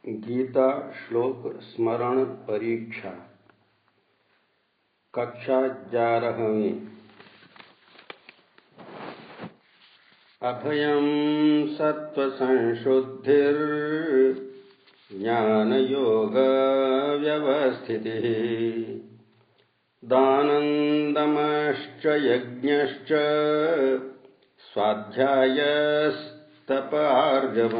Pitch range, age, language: 115-150 Hz, 60-79, Hindi